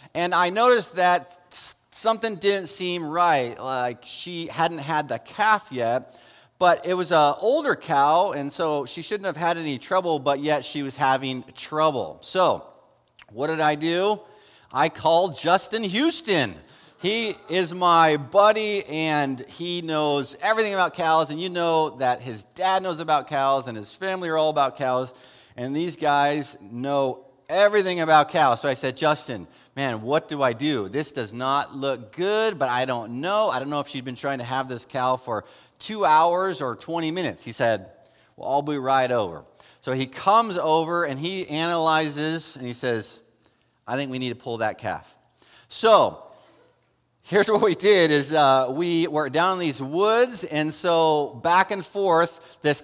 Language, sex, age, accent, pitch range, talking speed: English, male, 30-49, American, 140-180 Hz, 175 wpm